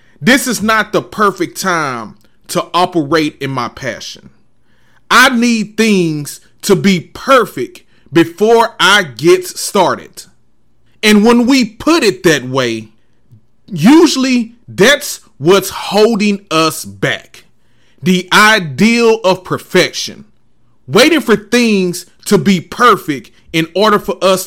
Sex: male